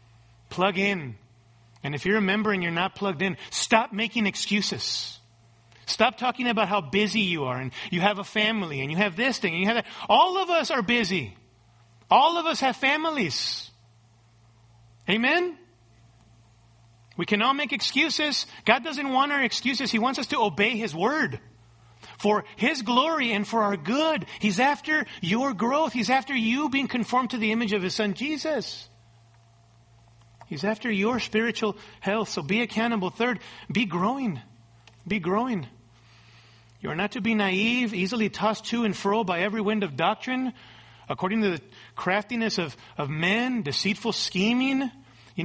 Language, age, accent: English, 40-59, American